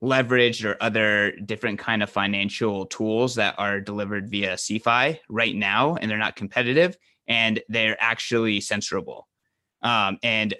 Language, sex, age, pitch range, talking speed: English, male, 20-39, 110-130 Hz, 140 wpm